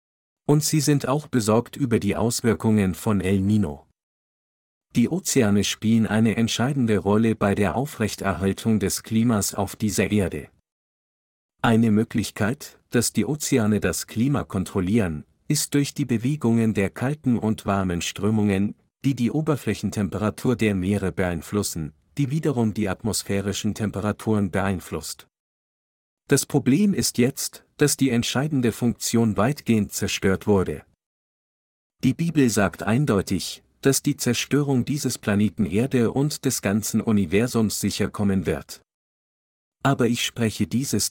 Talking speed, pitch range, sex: 125 wpm, 100-125 Hz, male